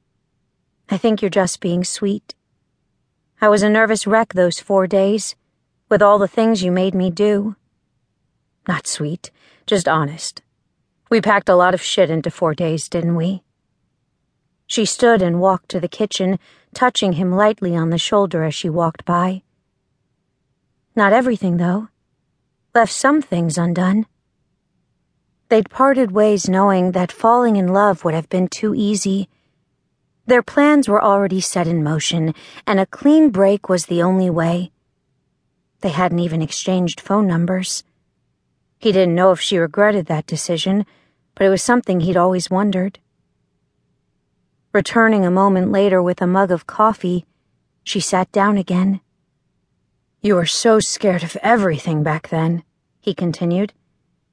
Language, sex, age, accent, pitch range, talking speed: English, female, 40-59, American, 175-210 Hz, 145 wpm